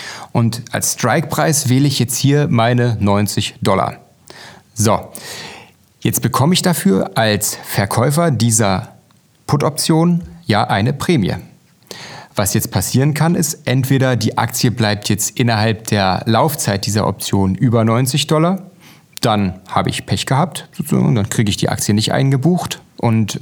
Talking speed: 140 wpm